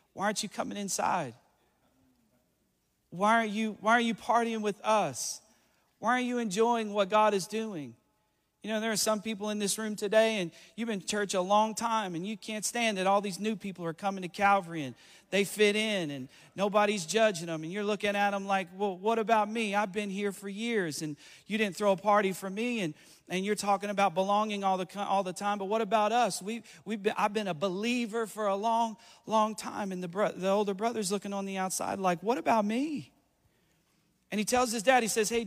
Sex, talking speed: male, 225 wpm